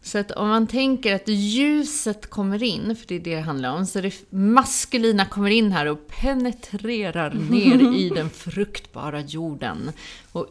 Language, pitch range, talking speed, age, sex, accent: Swedish, 170-225 Hz, 170 wpm, 30-49, female, native